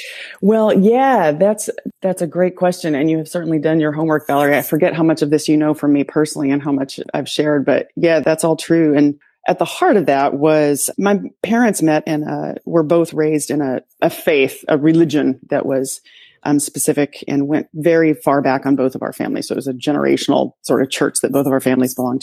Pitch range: 140-165 Hz